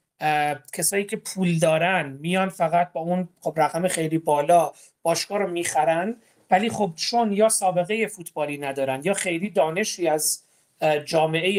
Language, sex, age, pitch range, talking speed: Persian, male, 30-49, 155-195 Hz, 145 wpm